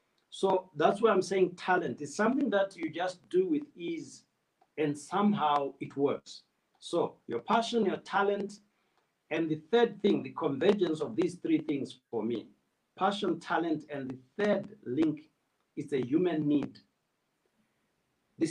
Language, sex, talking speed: English, male, 150 wpm